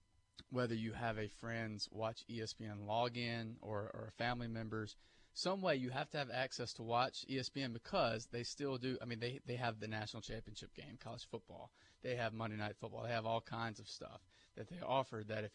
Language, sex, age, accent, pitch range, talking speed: English, male, 30-49, American, 110-135 Hz, 205 wpm